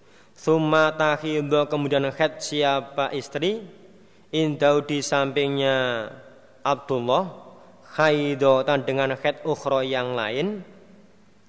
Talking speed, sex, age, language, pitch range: 75 wpm, male, 20-39, Indonesian, 130-155 Hz